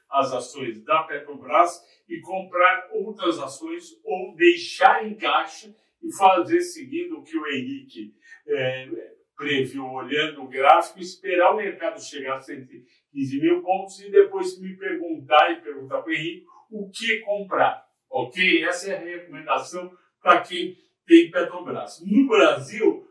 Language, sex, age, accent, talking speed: Portuguese, male, 60-79, Brazilian, 140 wpm